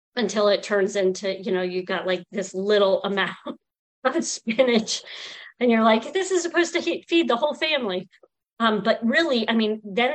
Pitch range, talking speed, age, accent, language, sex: 195-245 Hz, 190 wpm, 40-59, American, English, female